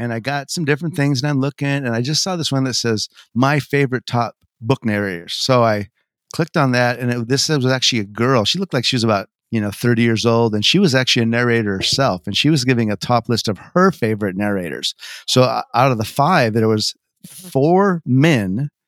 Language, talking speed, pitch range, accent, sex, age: English, 230 wpm, 115-150 Hz, American, male, 30-49